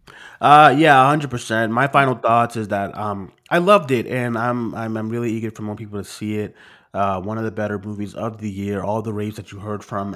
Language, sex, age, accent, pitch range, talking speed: English, male, 30-49, American, 100-120 Hz, 240 wpm